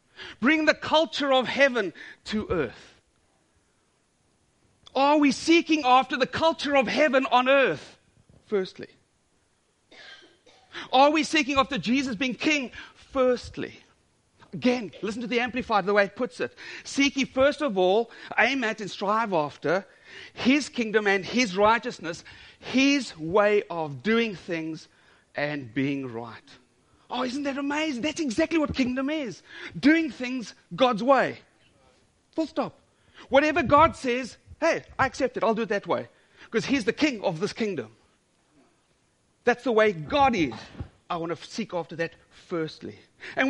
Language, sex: English, male